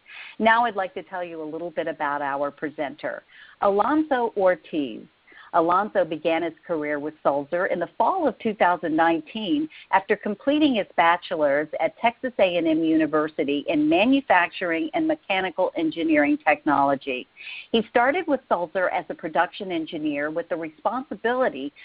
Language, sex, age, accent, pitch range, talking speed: English, female, 50-69, American, 165-245 Hz, 135 wpm